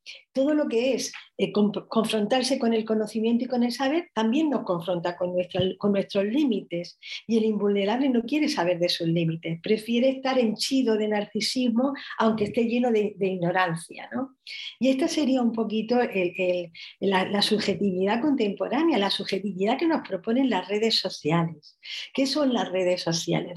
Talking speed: 160 wpm